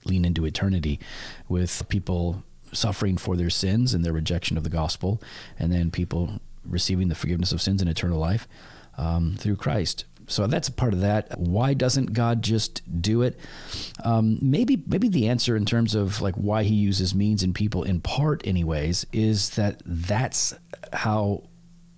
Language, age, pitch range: English, 40-59, 90-120 Hz